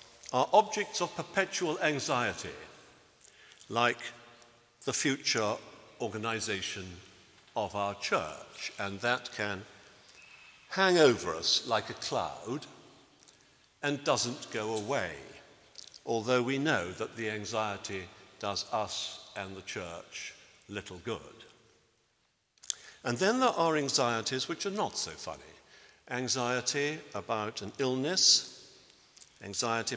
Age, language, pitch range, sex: 60-79, English, 110-145 Hz, male